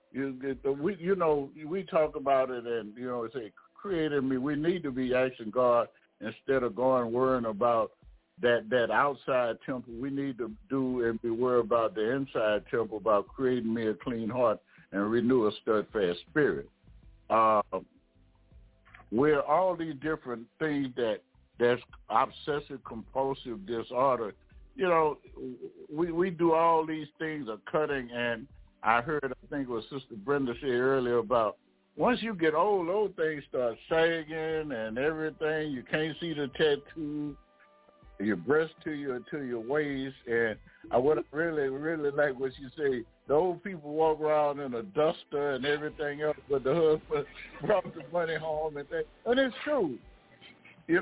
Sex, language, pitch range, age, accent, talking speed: male, English, 125-160 Hz, 60-79, American, 165 wpm